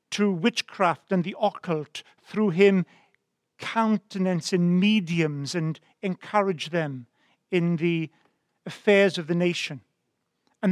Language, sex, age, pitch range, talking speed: English, male, 50-69, 170-205 Hz, 110 wpm